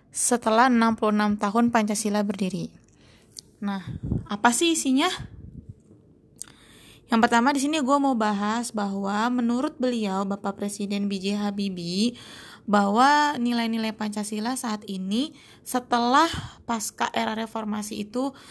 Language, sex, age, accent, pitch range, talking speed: Indonesian, female, 20-39, native, 205-240 Hz, 105 wpm